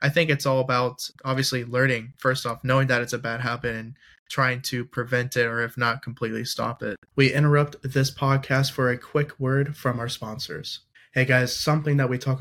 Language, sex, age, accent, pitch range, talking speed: English, male, 20-39, American, 120-135 Hz, 210 wpm